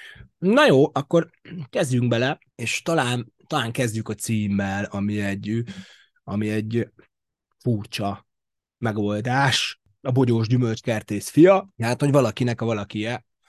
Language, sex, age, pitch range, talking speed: Hungarian, male, 30-49, 100-120 Hz, 115 wpm